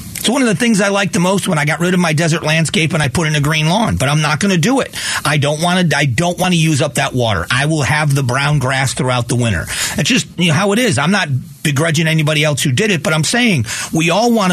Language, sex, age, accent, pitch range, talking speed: English, male, 40-59, American, 140-190 Hz, 300 wpm